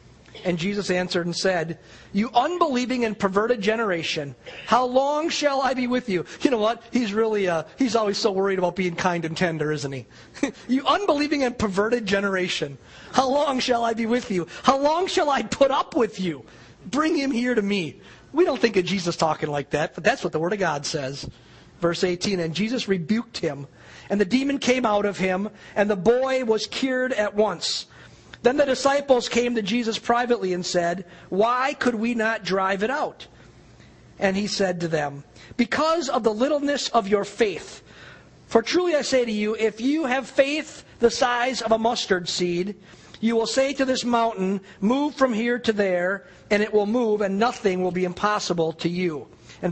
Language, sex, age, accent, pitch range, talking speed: English, male, 40-59, American, 180-245 Hz, 195 wpm